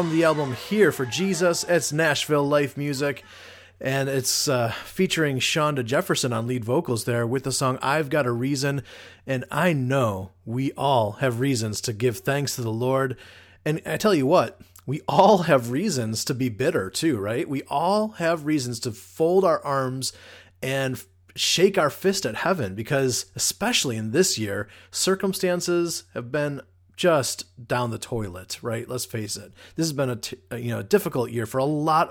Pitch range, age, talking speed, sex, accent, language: 120-165 Hz, 30-49, 180 wpm, male, American, English